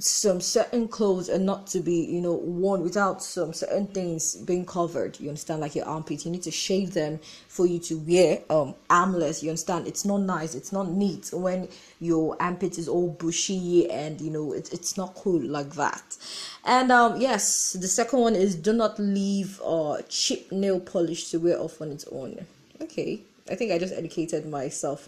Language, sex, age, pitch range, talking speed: English, female, 20-39, 165-200 Hz, 200 wpm